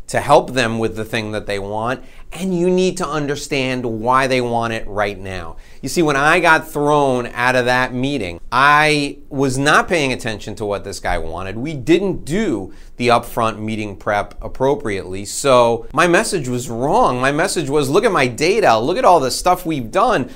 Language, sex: English, male